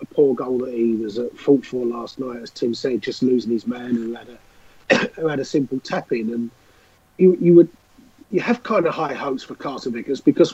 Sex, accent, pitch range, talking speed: male, British, 125-155 Hz, 235 wpm